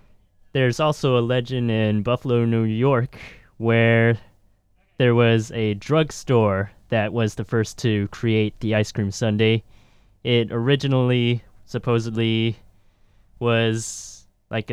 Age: 20-39